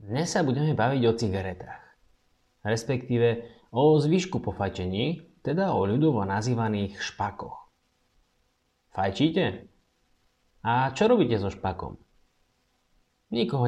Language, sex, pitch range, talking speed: Slovak, male, 100-145 Hz, 100 wpm